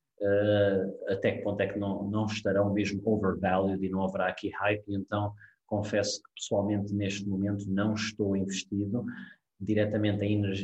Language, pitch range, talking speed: Portuguese, 100-120 Hz, 160 wpm